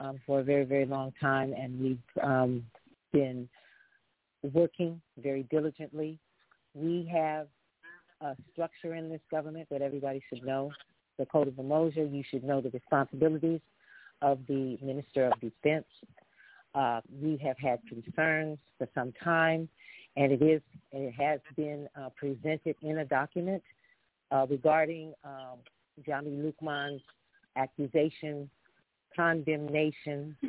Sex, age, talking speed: female, 50-69, 130 wpm